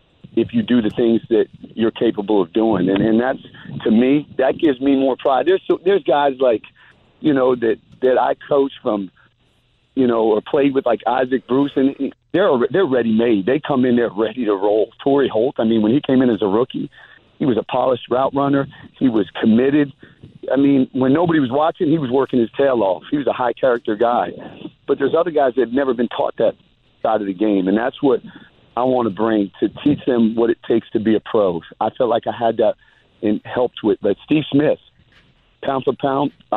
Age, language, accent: 50-69, English, American